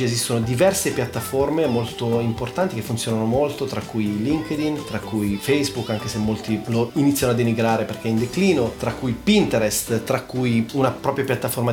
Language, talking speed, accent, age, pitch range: Italian, 170 wpm, native, 30-49, 115-145 Hz